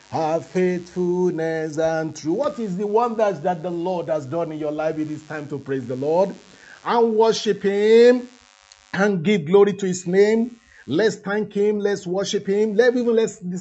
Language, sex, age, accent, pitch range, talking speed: English, male, 50-69, Nigerian, 145-190 Hz, 180 wpm